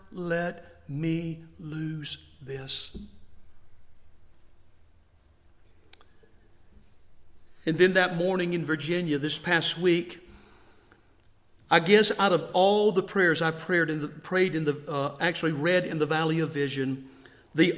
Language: English